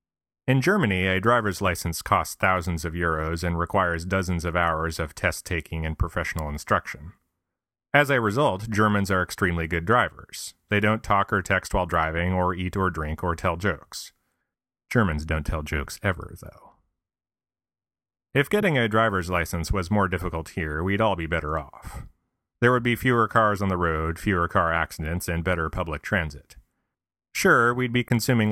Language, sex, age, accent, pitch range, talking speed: English, male, 30-49, American, 85-105 Hz, 170 wpm